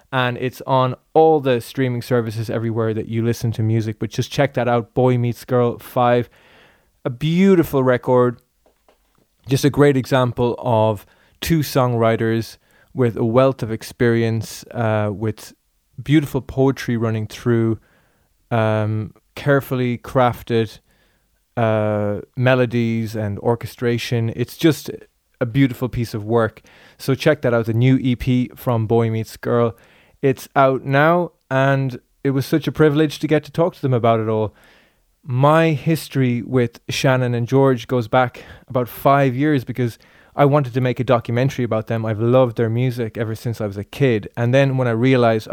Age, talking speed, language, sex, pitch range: 20-39, 160 wpm, English, male, 115-135 Hz